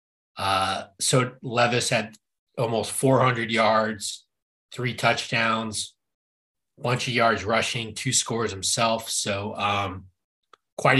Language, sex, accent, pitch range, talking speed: English, male, American, 105-125 Hz, 105 wpm